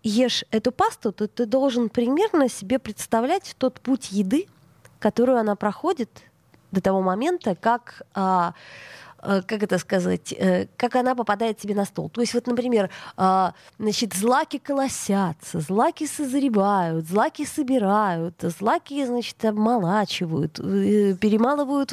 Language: Russian